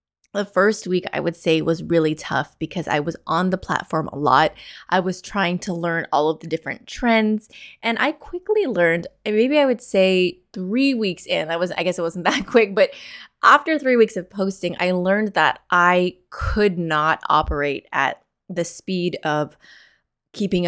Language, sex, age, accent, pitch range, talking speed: English, female, 20-39, American, 160-195 Hz, 185 wpm